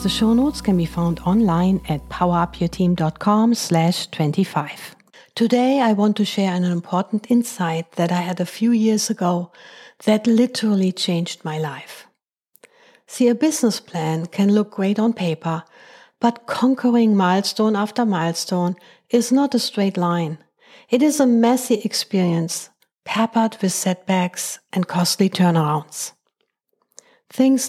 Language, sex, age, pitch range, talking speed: English, female, 60-79, 175-235 Hz, 130 wpm